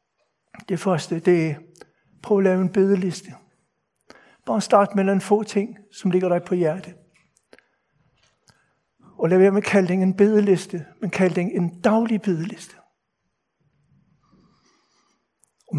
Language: Danish